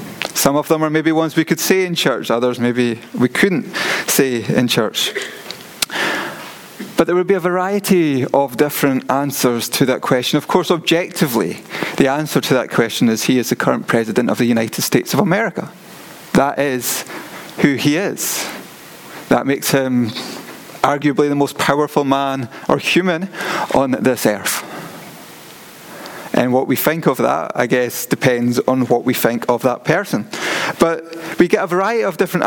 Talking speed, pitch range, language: 170 wpm, 130-170 Hz, English